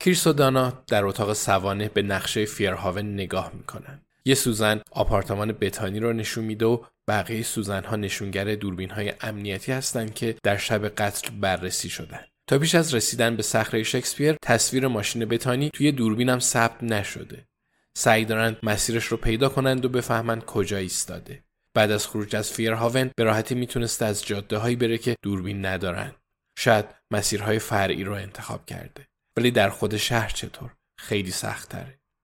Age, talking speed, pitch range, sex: 10-29, 150 wpm, 105-130 Hz, male